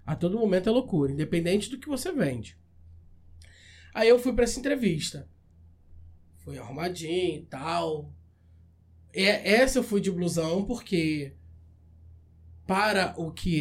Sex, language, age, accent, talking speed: male, Portuguese, 20-39, Brazilian, 130 wpm